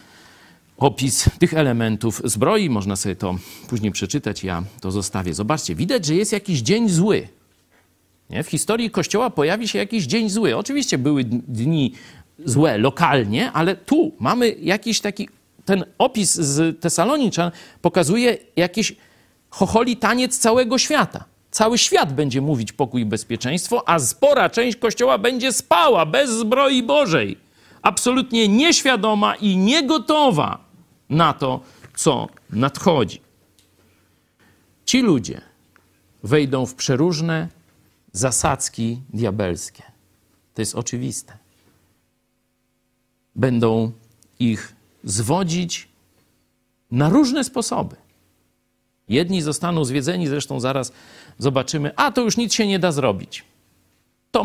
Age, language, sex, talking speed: 50-69, Polish, male, 115 wpm